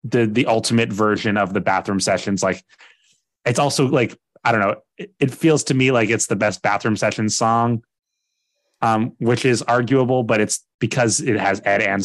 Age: 30-49